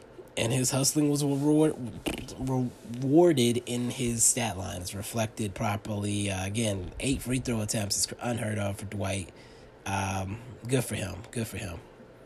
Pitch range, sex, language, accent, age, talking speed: 105-130 Hz, male, English, American, 20-39, 140 wpm